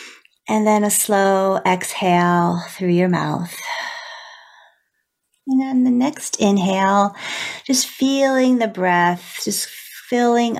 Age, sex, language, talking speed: 40-59, female, English, 110 wpm